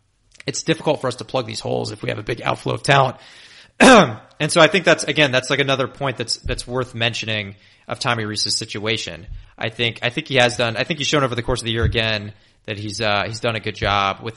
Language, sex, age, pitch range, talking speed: English, male, 30-49, 105-125 Hz, 255 wpm